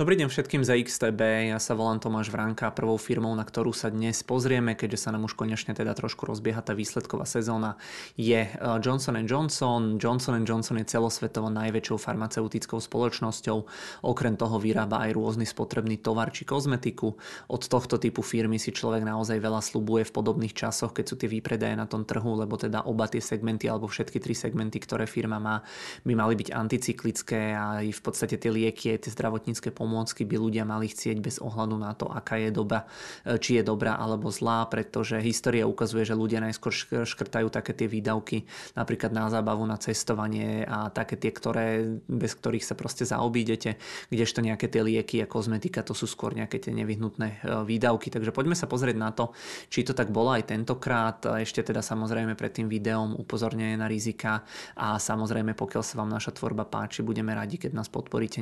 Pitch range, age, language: 110-115 Hz, 20-39, Czech